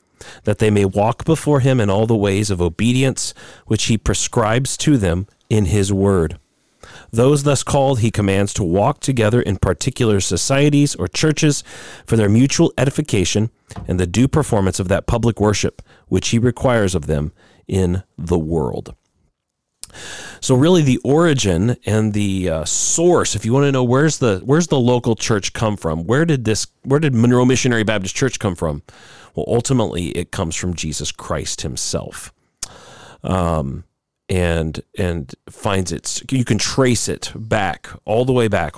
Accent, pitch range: American, 90-125 Hz